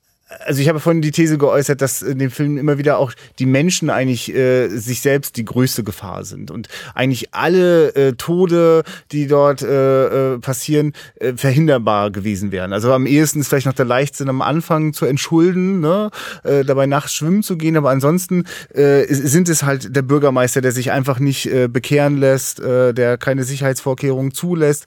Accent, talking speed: German, 180 wpm